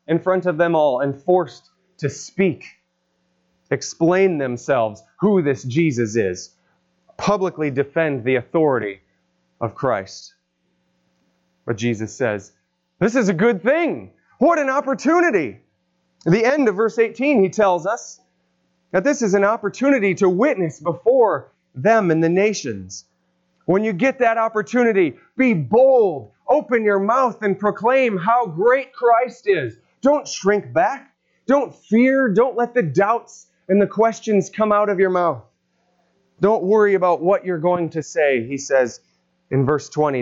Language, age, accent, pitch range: English, 30-49, American, 135-215 Hz